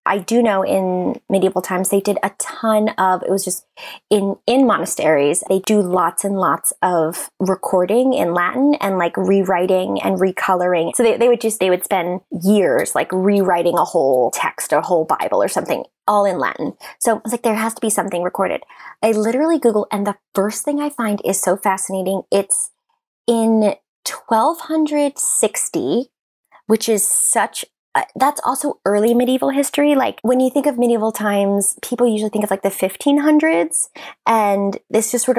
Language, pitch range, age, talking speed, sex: English, 185-230 Hz, 20-39, 180 wpm, female